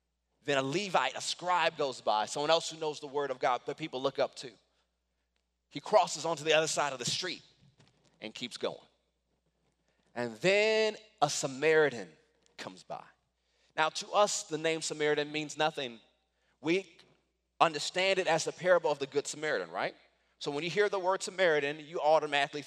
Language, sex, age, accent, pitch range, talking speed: English, male, 30-49, American, 145-210 Hz, 175 wpm